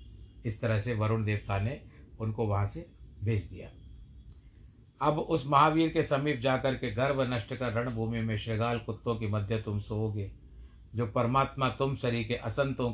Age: 60-79